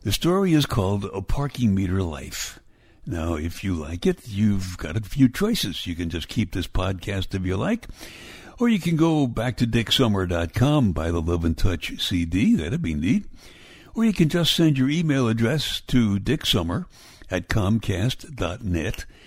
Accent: American